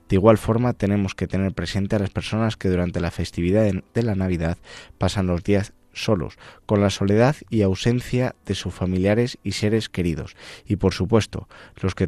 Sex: male